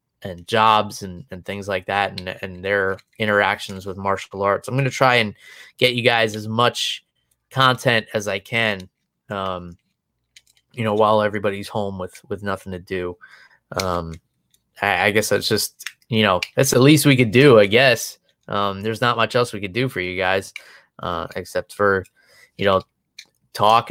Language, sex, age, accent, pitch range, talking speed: English, male, 20-39, American, 100-125 Hz, 180 wpm